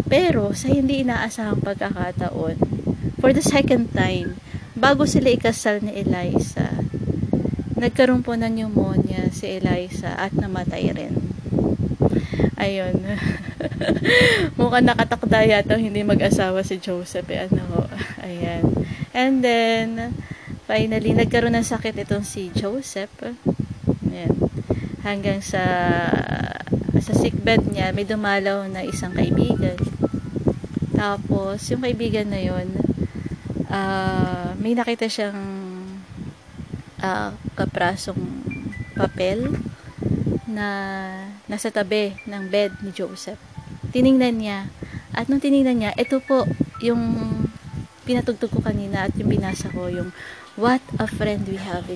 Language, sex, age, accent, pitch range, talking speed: Filipino, female, 20-39, native, 195-240 Hz, 110 wpm